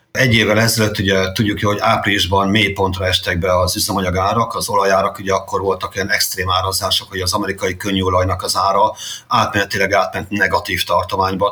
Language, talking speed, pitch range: Hungarian, 160 wpm, 95-110 Hz